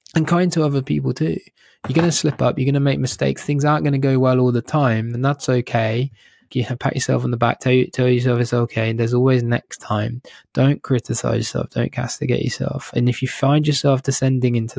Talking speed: 230 wpm